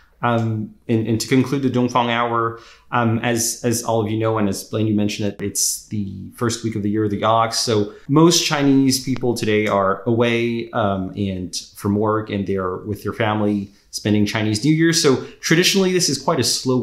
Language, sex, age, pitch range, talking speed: English, male, 30-49, 105-120 Hz, 210 wpm